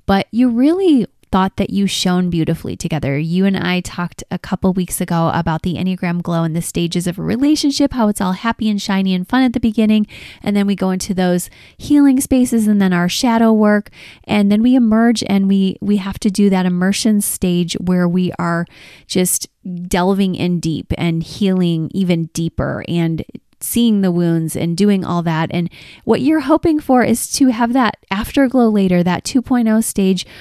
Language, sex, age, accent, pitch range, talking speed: English, female, 20-39, American, 180-245 Hz, 190 wpm